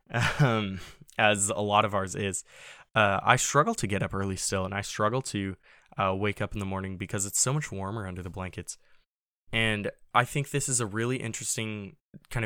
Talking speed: 200 wpm